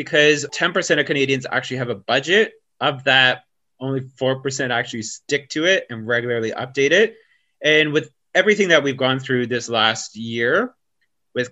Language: English